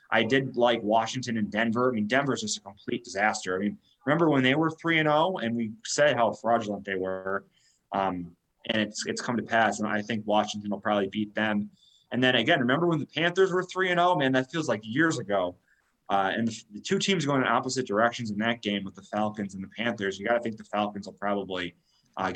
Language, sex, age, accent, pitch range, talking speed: English, male, 20-39, American, 100-120 Hz, 235 wpm